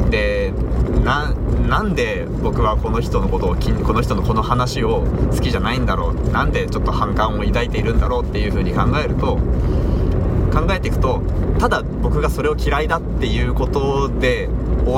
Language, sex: Japanese, male